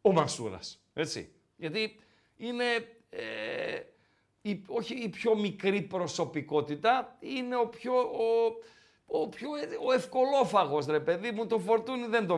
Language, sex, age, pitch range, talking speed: Greek, male, 50-69, 160-230 Hz, 130 wpm